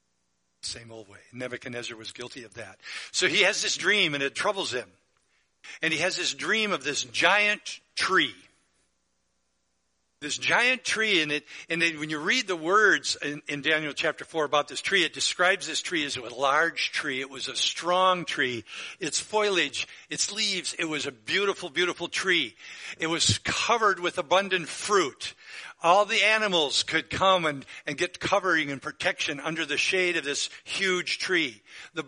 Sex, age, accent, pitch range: male, 60-79, American, 110-180 Hz